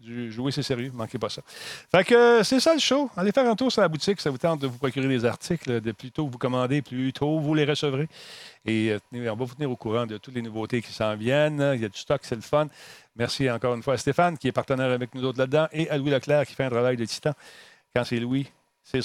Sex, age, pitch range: male, 40-59, 120-155 Hz